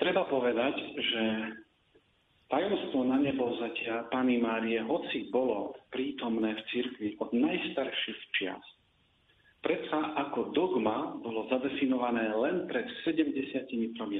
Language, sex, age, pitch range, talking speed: Slovak, male, 50-69, 115-175 Hz, 105 wpm